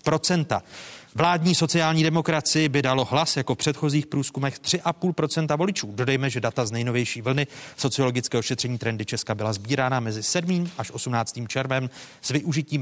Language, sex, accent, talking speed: Czech, male, native, 145 wpm